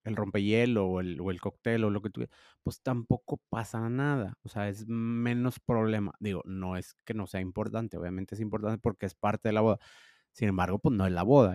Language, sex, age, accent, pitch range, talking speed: Spanish, male, 30-49, Mexican, 105-125 Hz, 225 wpm